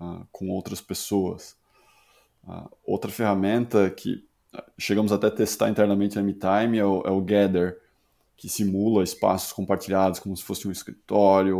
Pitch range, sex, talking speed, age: 105-125 Hz, male, 150 wpm, 20-39